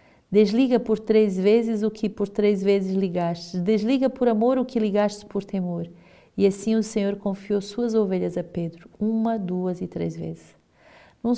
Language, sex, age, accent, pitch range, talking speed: Portuguese, female, 40-59, Brazilian, 180-220 Hz, 175 wpm